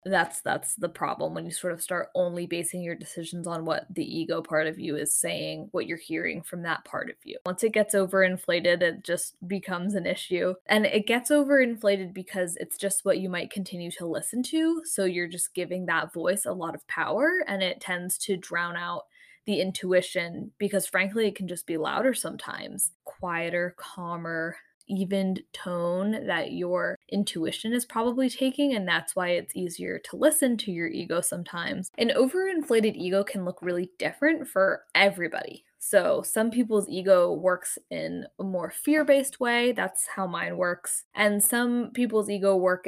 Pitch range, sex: 175-215 Hz, female